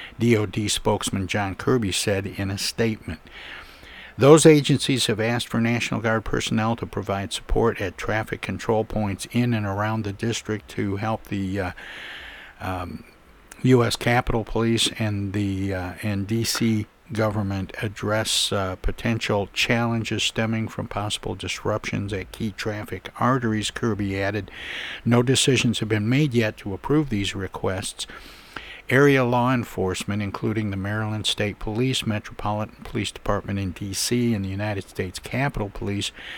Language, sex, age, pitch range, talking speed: English, male, 60-79, 100-115 Hz, 140 wpm